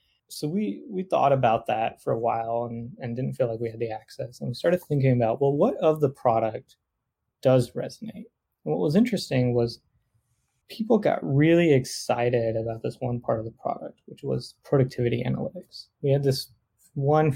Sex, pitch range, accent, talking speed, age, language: male, 115-145 Hz, American, 185 wpm, 20-39, English